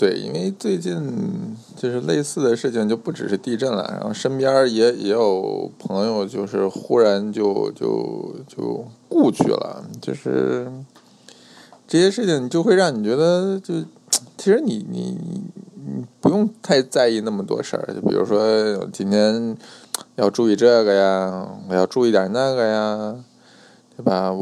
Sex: male